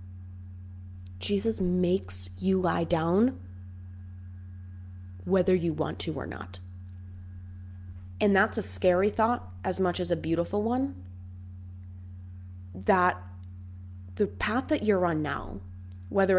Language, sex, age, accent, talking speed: English, female, 20-39, American, 110 wpm